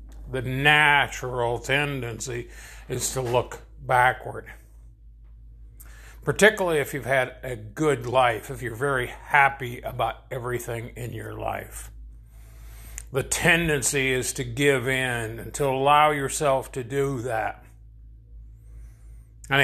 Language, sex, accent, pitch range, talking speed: English, male, American, 115-150 Hz, 115 wpm